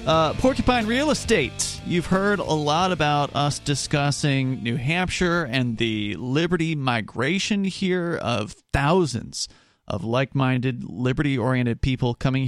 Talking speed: 120 wpm